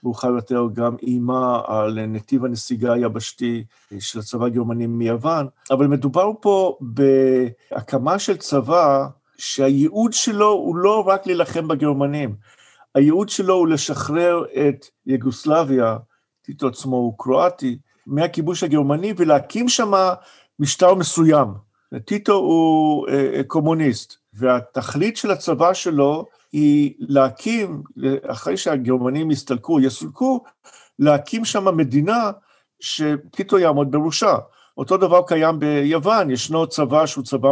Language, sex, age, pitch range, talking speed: Hebrew, male, 50-69, 130-180 Hz, 110 wpm